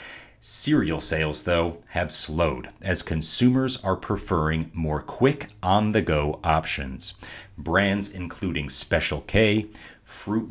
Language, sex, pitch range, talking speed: English, male, 80-105 Hz, 105 wpm